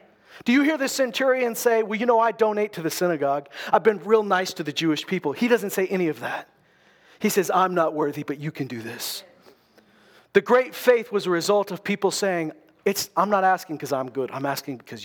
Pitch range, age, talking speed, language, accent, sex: 170-220 Hz, 40-59, 225 wpm, English, American, male